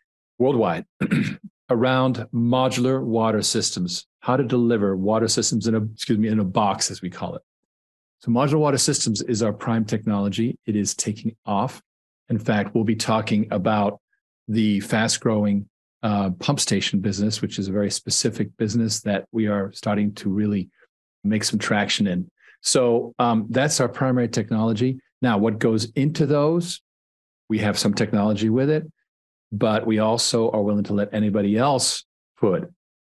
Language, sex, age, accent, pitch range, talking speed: English, male, 40-59, American, 105-120 Hz, 155 wpm